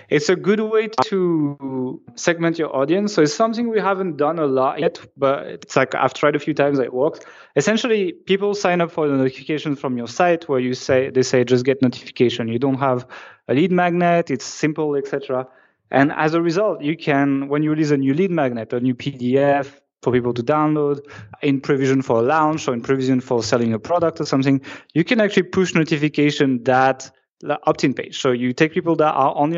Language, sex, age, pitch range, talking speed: English, male, 20-39, 130-160 Hz, 215 wpm